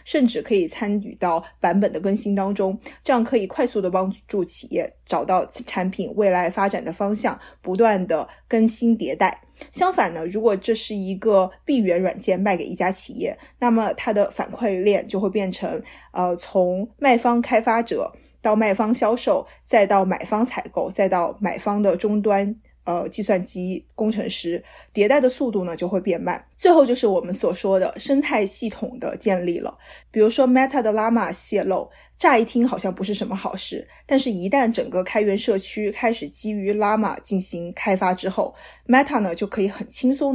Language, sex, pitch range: Chinese, female, 190-235 Hz